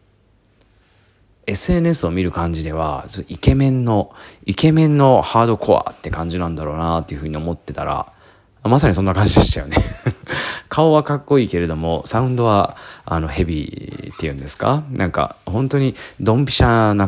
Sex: male